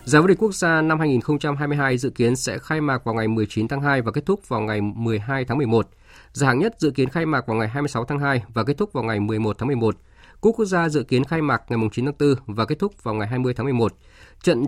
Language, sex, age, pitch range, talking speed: Vietnamese, male, 20-39, 115-155 Hz, 270 wpm